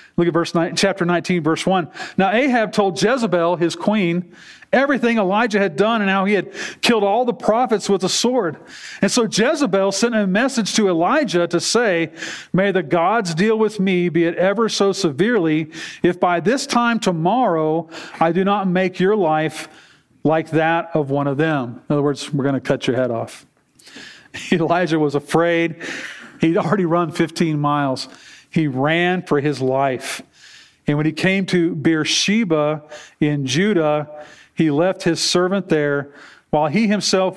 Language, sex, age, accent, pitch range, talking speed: English, male, 40-59, American, 150-195 Hz, 170 wpm